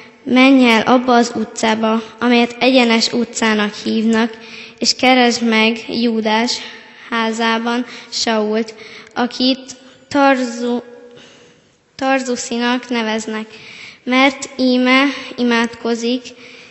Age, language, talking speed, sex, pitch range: 10-29, Hungarian, 85 wpm, female, 225-245 Hz